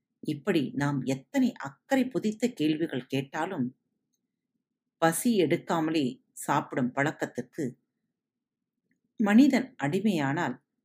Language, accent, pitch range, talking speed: Tamil, native, 150-240 Hz, 70 wpm